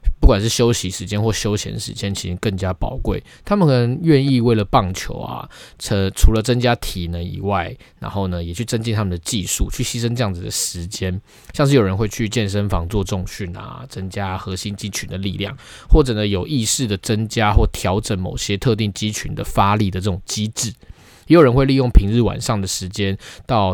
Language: Chinese